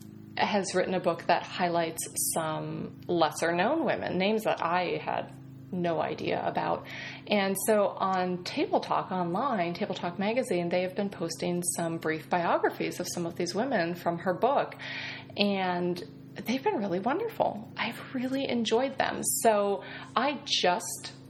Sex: female